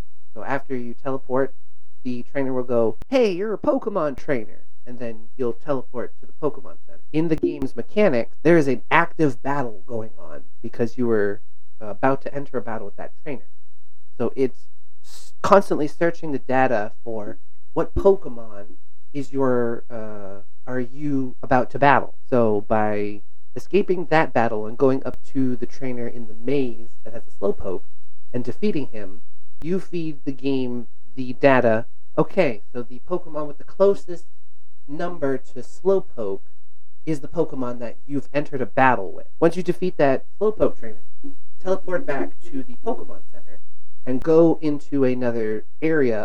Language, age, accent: English, 30-49, American